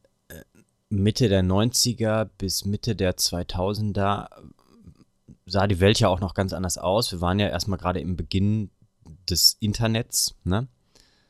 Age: 30-49